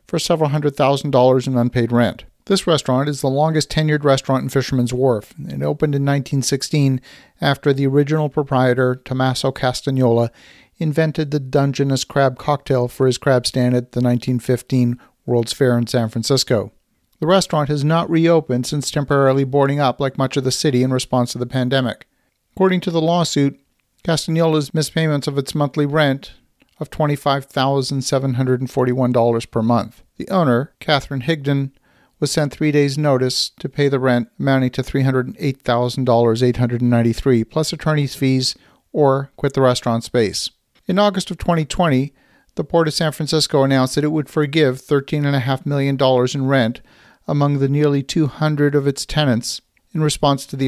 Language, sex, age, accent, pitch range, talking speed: English, male, 50-69, American, 125-150 Hz, 155 wpm